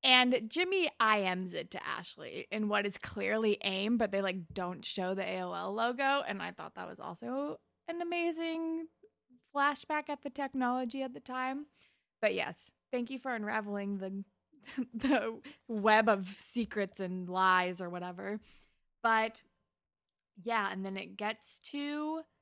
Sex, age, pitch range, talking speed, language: female, 20-39, 185-260 Hz, 150 wpm, English